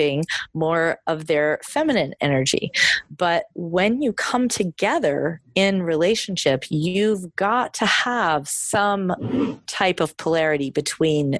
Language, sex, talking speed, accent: English, female, 110 wpm, American